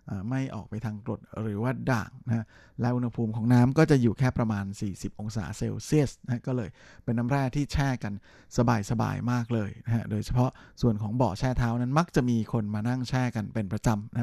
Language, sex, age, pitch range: Thai, male, 20-39, 110-130 Hz